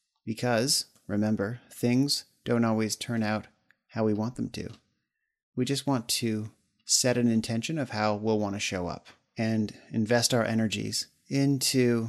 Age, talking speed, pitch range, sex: 30-49, 155 wpm, 110-130 Hz, male